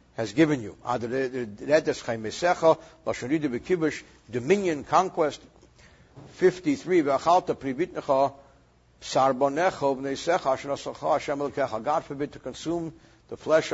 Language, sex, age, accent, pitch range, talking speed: English, male, 60-79, American, 130-160 Hz, 55 wpm